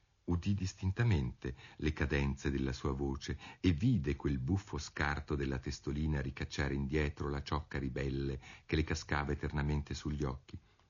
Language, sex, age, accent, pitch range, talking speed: Italian, male, 50-69, native, 70-120 Hz, 140 wpm